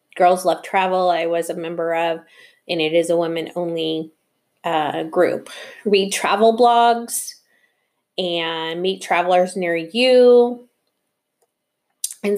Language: English